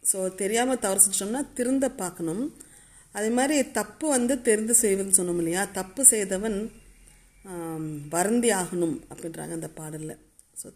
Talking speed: 110 wpm